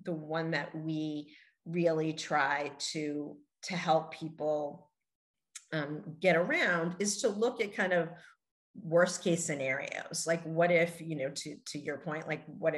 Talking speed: 155 wpm